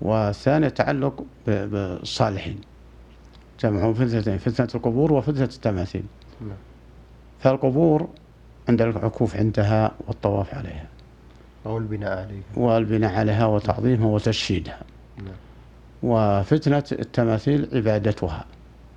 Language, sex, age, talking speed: Arabic, male, 60-79, 80 wpm